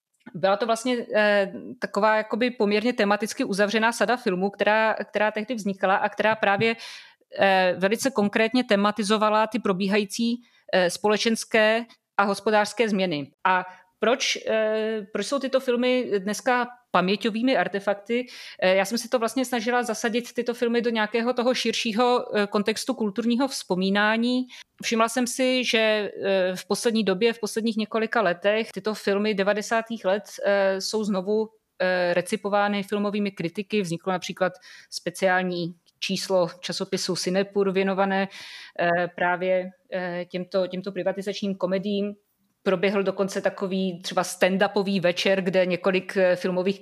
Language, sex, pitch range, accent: Czech, female, 185-220 Hz, native